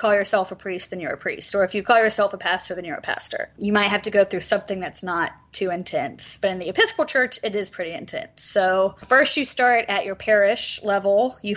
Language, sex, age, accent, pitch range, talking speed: English, female, 20-39, American, 185-220 Hz, 250 wpm